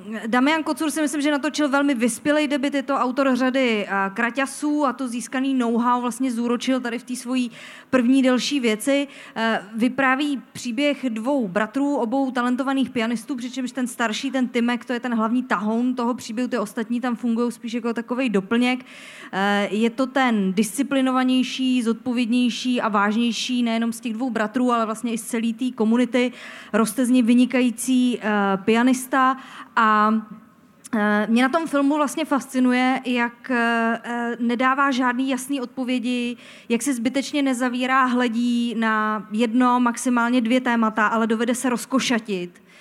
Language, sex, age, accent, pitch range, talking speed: Czech, female, 30-49, native, 225-255 Hz, 145 wpm